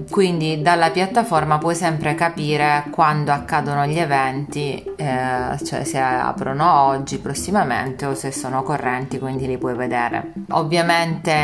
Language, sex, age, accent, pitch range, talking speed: Italian, female, 30-49, native, 140-165 Hz, 130 wpm